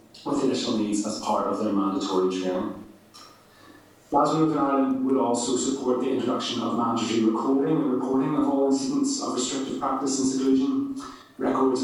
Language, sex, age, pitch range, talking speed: English, male, 30-49, 110-140 Hz, 155 wpm